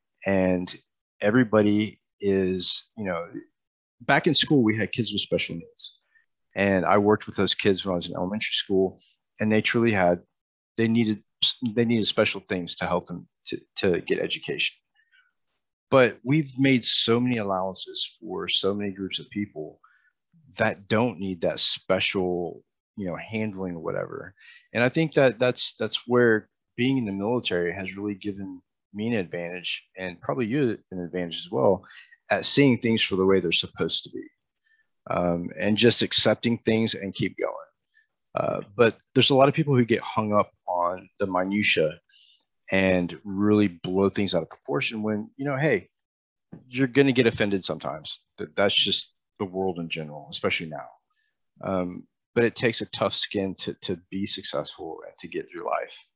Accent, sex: American, male